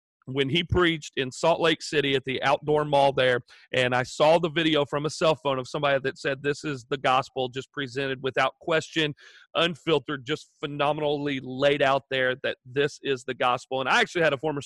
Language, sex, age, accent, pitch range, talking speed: English, male, 40-59, American, 140-170 Hz, 205 wpm